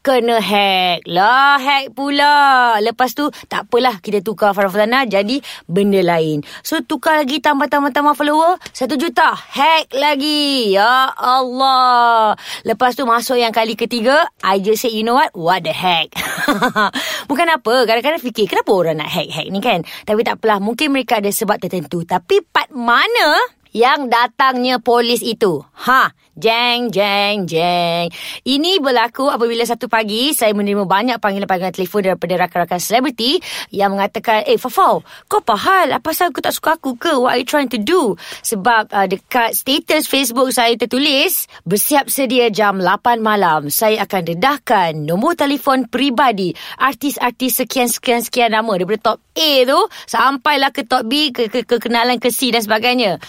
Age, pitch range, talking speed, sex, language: 20-39, 210-275 Hz, 160 wpm, female, Malay